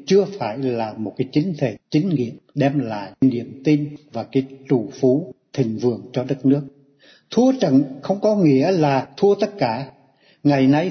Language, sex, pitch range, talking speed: Vietnamese, male, 130-165 Hz, 180 wpm